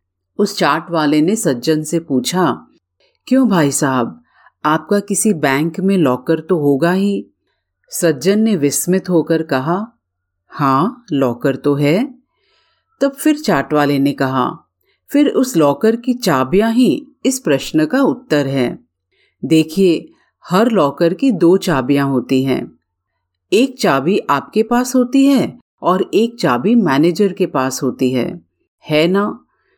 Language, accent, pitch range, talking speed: Hindi, native, 140-240 Hz, 135 wpm